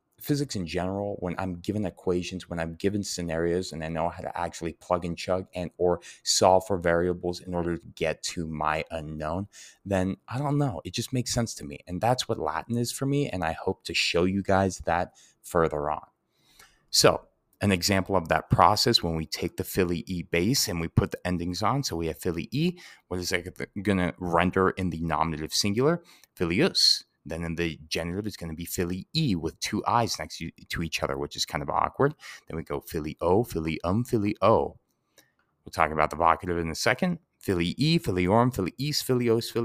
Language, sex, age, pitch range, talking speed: English, male, 30-49, 85-105 Hz, 210 wpm